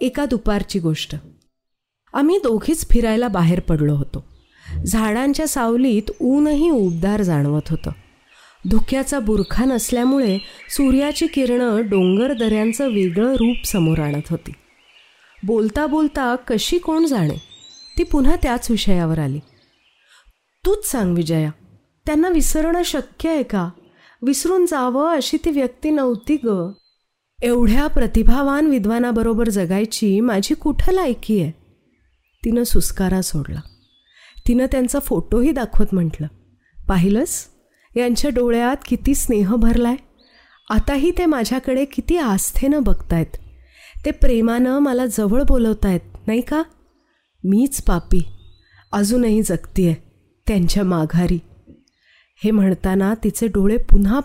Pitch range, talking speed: 190-275 Hz, 110 wpm